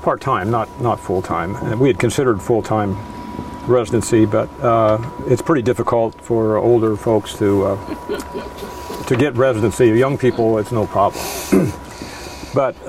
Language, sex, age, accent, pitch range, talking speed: English, male, 50-69, American, 110-130 Hz, 145 wpm